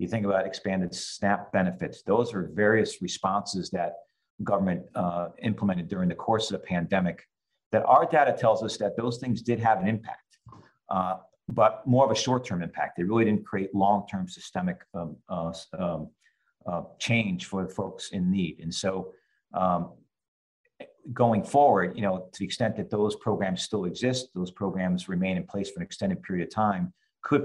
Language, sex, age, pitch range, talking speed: English, male, 50-69, 90-120 Hz, 175 wpm